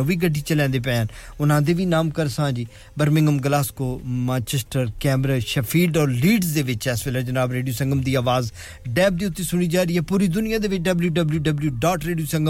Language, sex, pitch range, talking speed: English, male, 130-165 Hz, 180 wpm